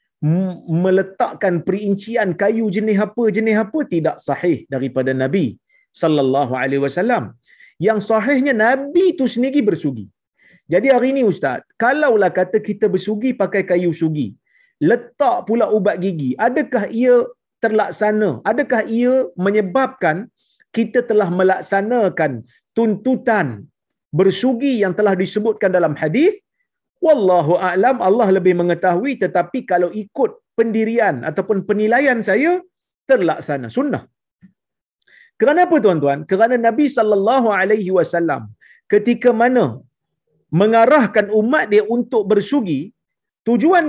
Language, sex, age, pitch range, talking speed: Malayalam, male, 40-59, 180-250 Hz, 110 wpm